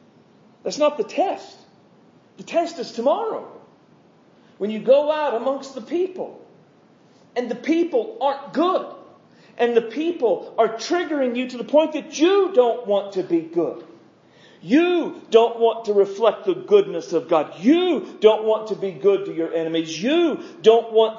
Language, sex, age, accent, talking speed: English, male, 40-59, American, 160 wpm